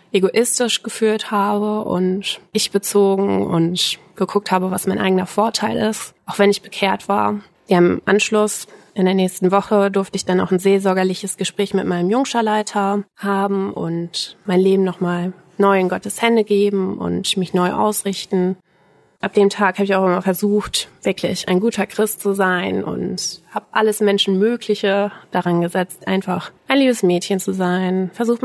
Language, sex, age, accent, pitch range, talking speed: German, female, 20-39, German, 185-205 Hz, 160 wpm